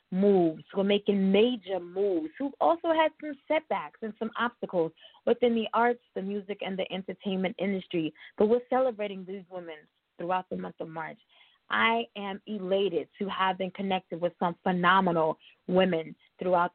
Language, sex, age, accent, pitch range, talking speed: English, female, 20-39, American, 185-240 Hz, 160 wpm